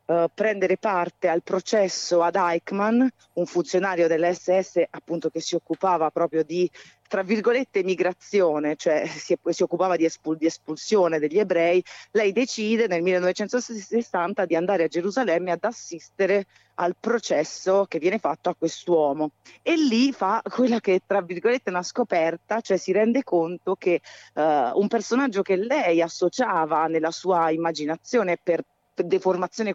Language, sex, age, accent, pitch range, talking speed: Italian, female, 30-49, native, 170-210 Hz, 145 wpm